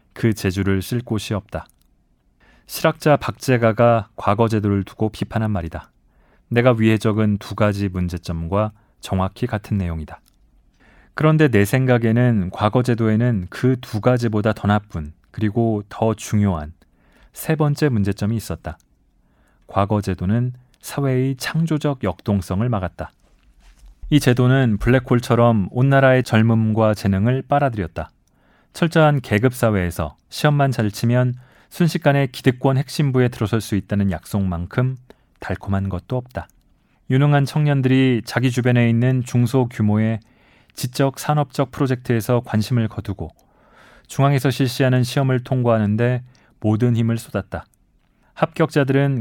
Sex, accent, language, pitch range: male, native, Korean, 100-130 Hz